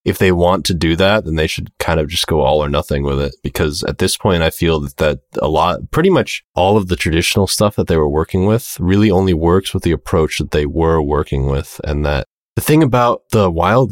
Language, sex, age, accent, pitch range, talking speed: English, male, 20-39, American, 80-105 Hz, 250 wpm